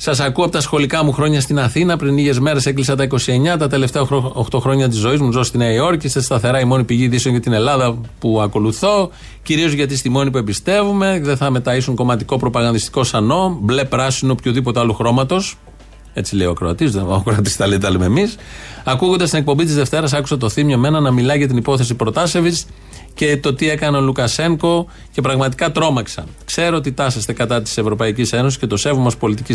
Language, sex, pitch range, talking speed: Greek, male, 120-150 Hz, 195 wpm